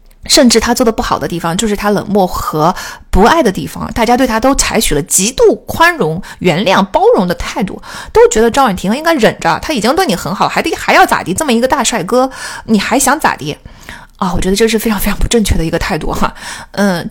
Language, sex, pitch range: Chinese, female, 195-250 Hz